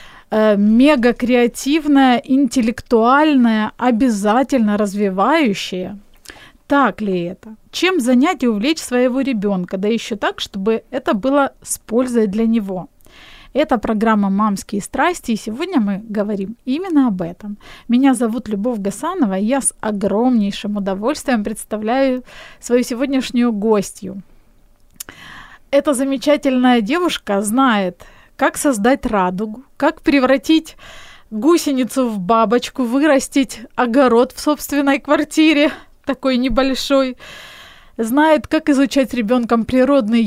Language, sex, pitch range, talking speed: Ukrainian, female, 220-275 Hz, 110 wpm